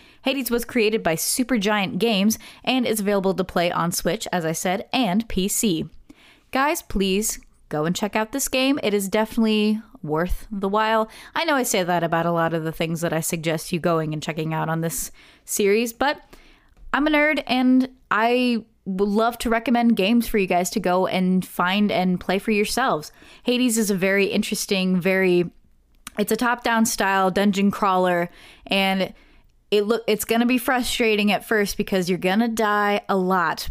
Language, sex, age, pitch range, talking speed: English, female, 20-39, 180-230 Hz, 185 wpm